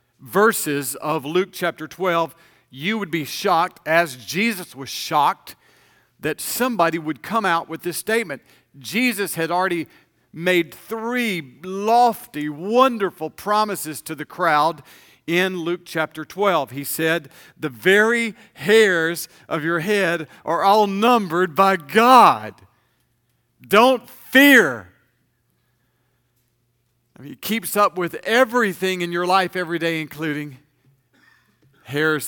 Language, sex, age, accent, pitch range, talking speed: English, male, 50-69, American, 145-225 Hz, 115 wpm